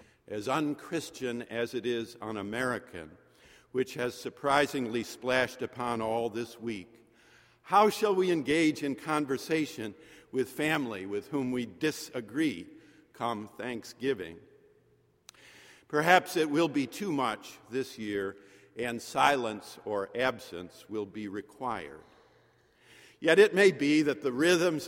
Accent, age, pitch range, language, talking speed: American, 50-69, 120-165 Hz, English, 120 wpm